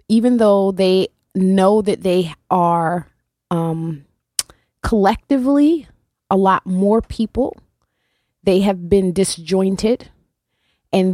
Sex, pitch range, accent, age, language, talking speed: female, 165-195 Hz, American, 20-39, English, 95 wpm